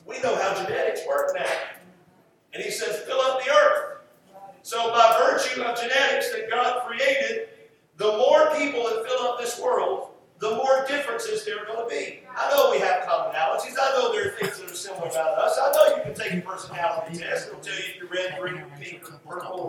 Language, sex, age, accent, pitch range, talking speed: English, male, 50-69, American, 210-305 Hz, 210 wpm